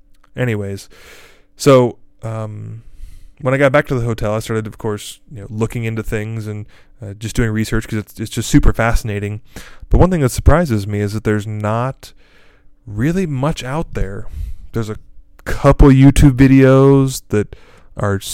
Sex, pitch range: male, 105-125 Hz